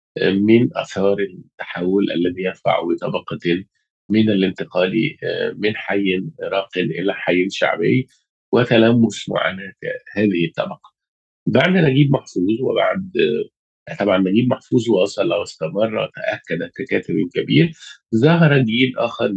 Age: 50-69